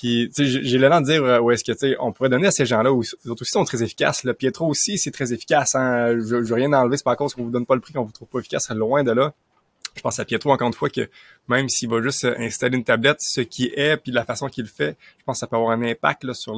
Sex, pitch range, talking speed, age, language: male, 110-135 Hz, 315 wpm, 20-39, French